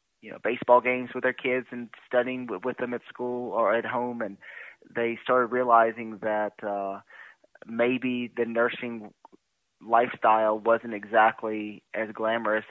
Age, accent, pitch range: 30-49, American, 105-120 Hz